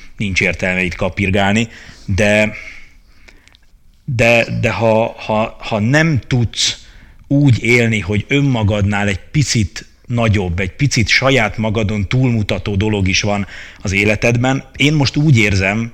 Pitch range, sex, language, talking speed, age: 95-115 Hz, male, Hungarian, 125 wpm, 30-49